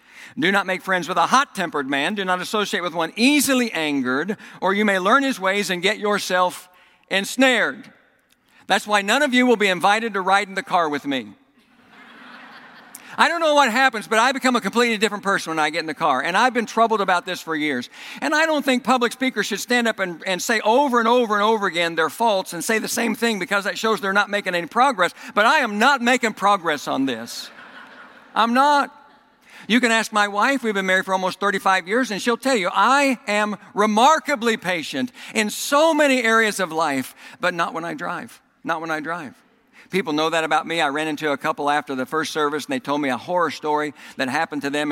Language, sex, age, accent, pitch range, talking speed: English, male, 60-79, American, 165-240 Hz, 225 wpm